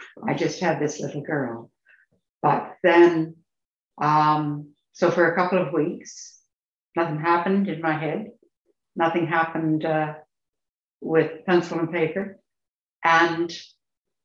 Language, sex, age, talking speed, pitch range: English, female, 60-79, 120 wpm, 140-185 Hz